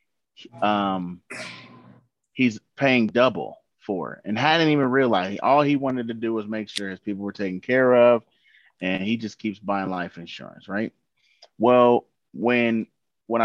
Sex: male